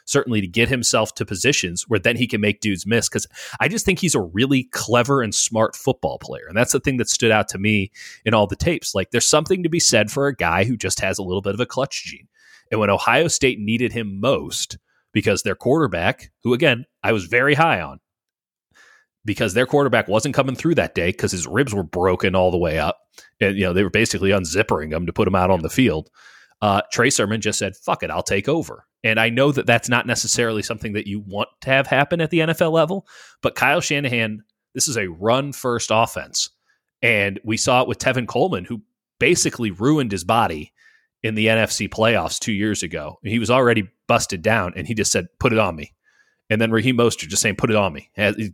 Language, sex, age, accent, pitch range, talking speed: English, male, 30-49, American, 100-135 Hz, 230 wpm